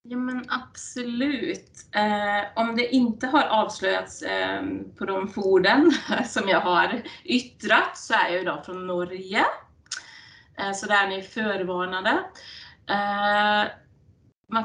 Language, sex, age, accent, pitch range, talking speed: English, female, 20-39, Swedish, 195-245 Hz, 100 wpm